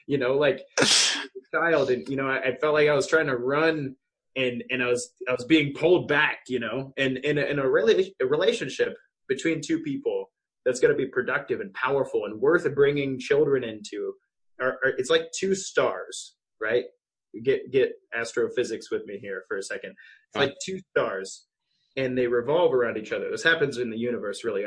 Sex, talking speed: male, 200 wpm